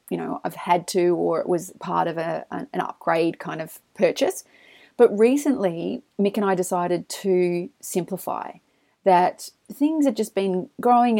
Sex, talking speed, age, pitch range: female, 160 wpm, 30-49, 180-230 Hz